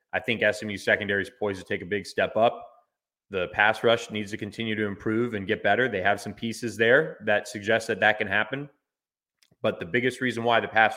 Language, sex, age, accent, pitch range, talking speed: English, male, 30-49, American, 100-115 Hz, 225 wpm